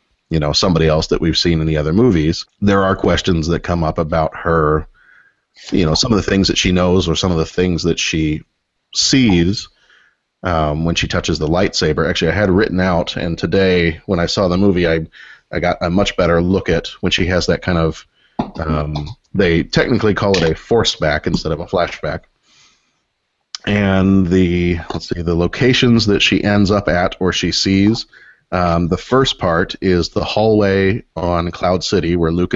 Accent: American